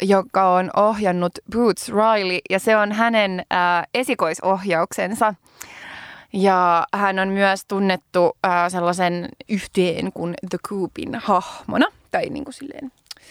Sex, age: female, 20-39